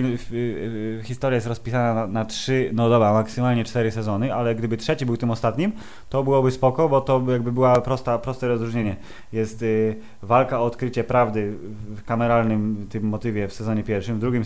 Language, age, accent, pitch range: Polish, 20-39, native, 110-125 Hz